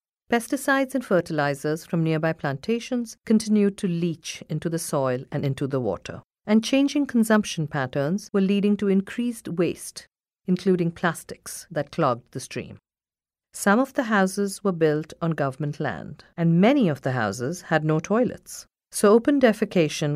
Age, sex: 50-69, female